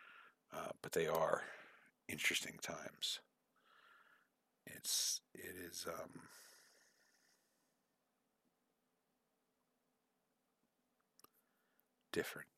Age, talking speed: 50-69, 50 wpm